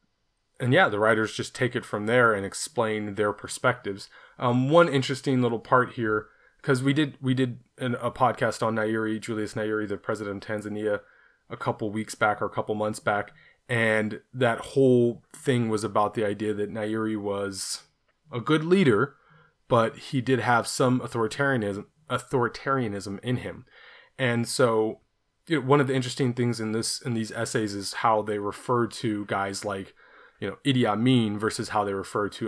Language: English